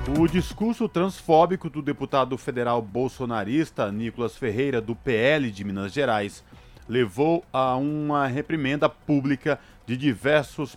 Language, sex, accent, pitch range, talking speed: Portuguese, male, Brazilian, 115-145 Hz, 115 wpm